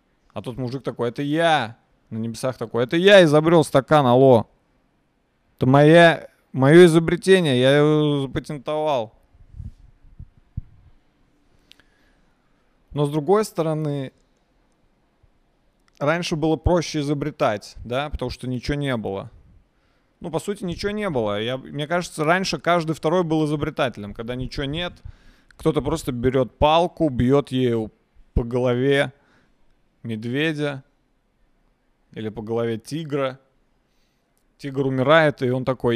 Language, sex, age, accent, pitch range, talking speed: Russian, male, 20-39, native, 125-170 Hz, 115 wpm